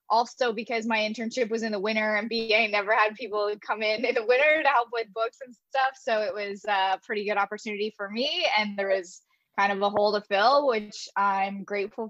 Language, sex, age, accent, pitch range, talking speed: English, female, 10-29, American, 205-240 Hz, 225 wpm